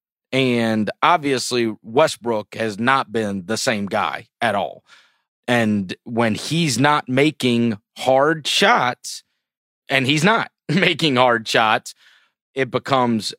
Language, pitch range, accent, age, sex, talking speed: English, 115-155 Hz, American, 30-49, male, 115 wpm